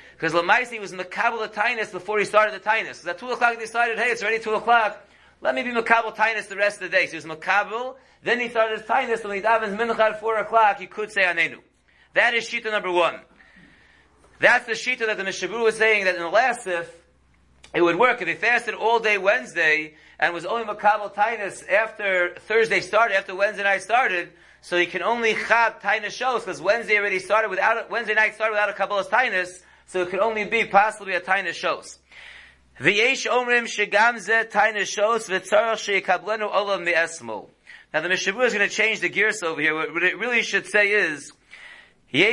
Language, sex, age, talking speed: English, male, 30-49, 195 wpm